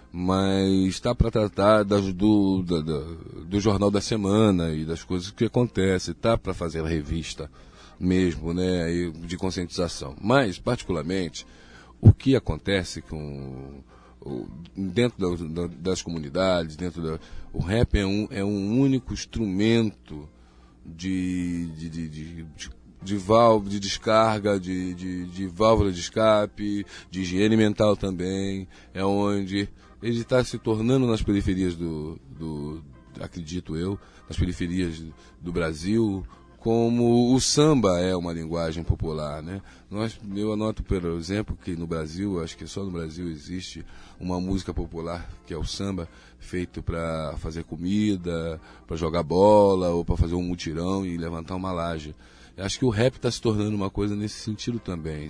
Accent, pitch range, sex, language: Brazilian, 80-105 Hz, male, Portuguese